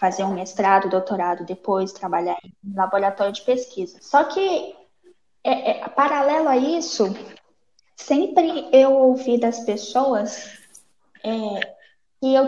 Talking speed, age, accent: 105 wpm, 10-29, Brazilian